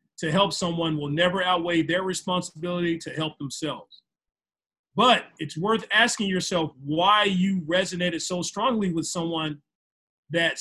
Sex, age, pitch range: male, 40-59, 160-190 Hz